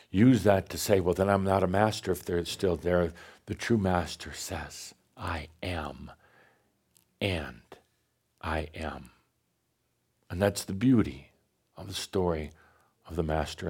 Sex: male